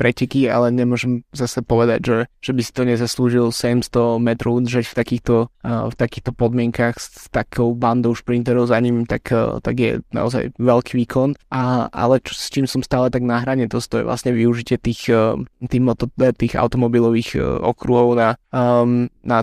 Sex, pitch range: male, 120-125 Hz